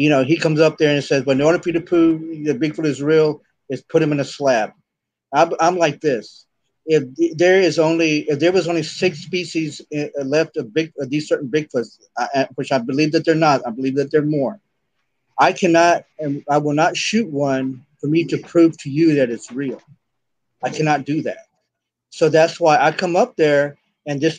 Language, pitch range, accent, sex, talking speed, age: English, 135-165 Hz, American, male, 215 wpm, 40-59